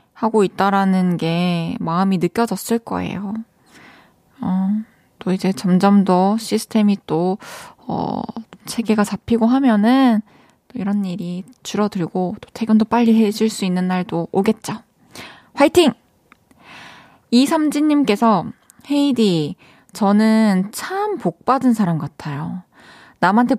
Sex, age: female, 20-39